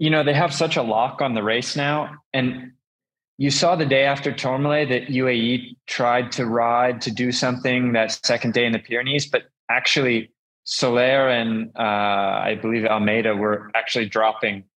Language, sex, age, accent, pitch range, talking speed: English, male, 20-39, American, 110-135 Hz, 175 wpm